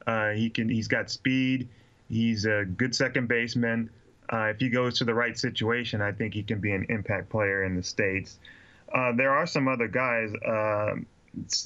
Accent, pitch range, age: American, 110-125 Hz, 20-39